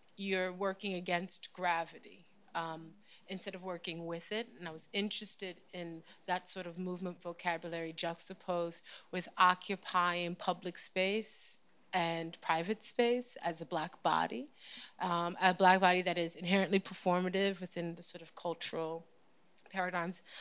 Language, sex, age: English, female, 30-49